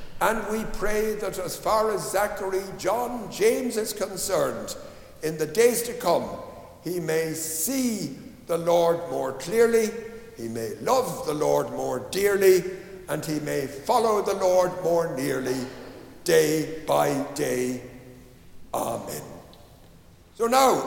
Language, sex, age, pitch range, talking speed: English, male, 60-79, 160-210 Hz, 130 wpm